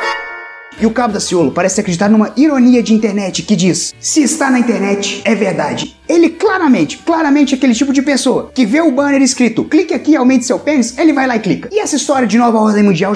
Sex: male